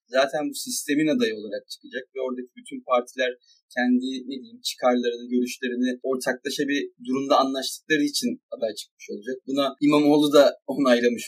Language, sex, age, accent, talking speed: Turkish, male, 30-49, native, 145 wpm